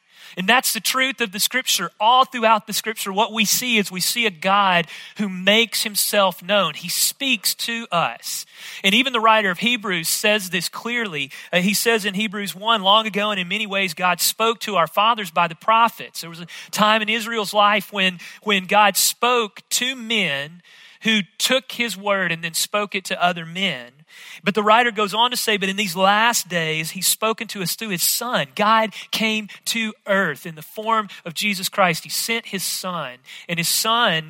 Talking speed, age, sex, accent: 200 wpm, 40-59, male, American